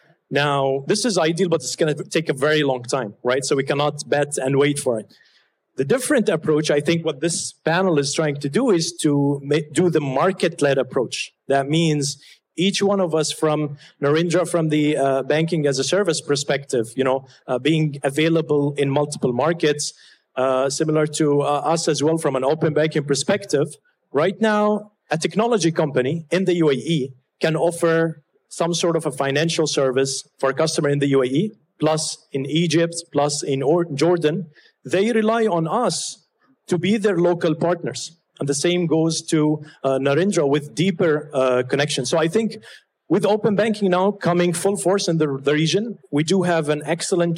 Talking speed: 185 wpm